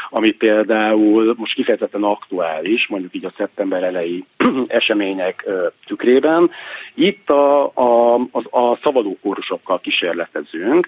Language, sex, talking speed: Hungarian, male, 110 wpm